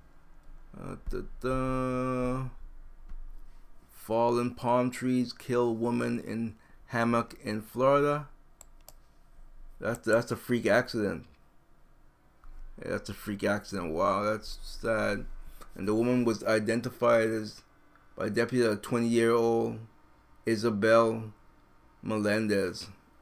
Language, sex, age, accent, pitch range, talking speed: English, male, 30-49, American, 110-120 Hz, 95 wpm